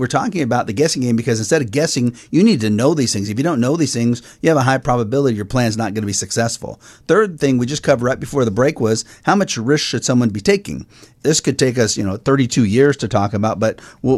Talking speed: 275 wpm